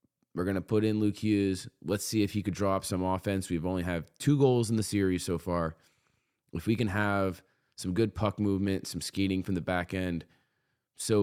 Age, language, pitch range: 20-39, English, 90-105 Hz